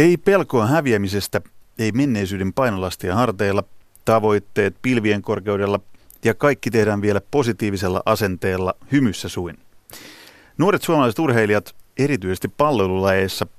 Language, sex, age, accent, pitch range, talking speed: Finnish, male, 30-49, native, 100-125 Hz, 100 wpm